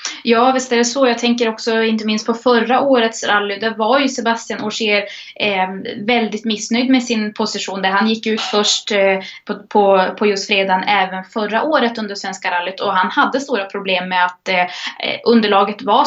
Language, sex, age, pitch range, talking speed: Swedish, female, 20-39, 195-235 Hz, 195 wpm